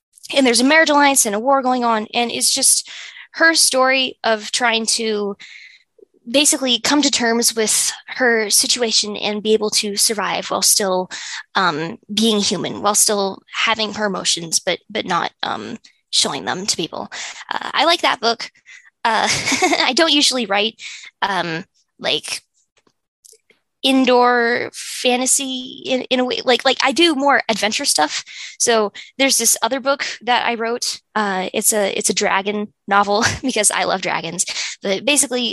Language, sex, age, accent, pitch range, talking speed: English, female, 10-29, American, 200-255 Hz, 160 wpm